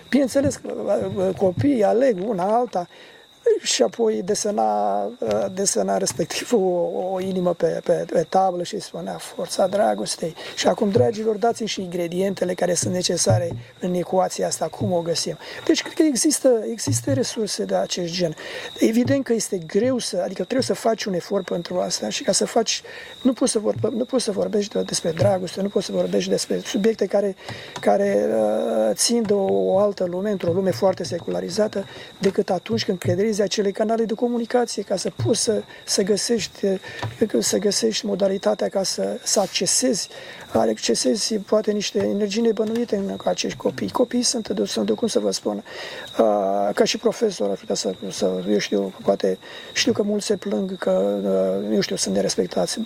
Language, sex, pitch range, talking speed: Romanian, male, 180-230 Hz, 170 wpm